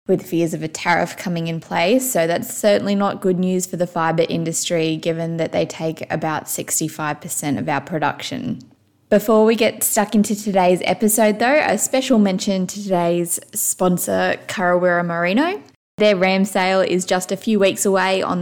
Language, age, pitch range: English, 10-29, 170-200 Hz